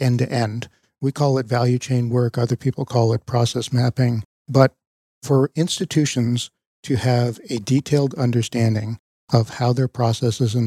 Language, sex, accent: English, male, American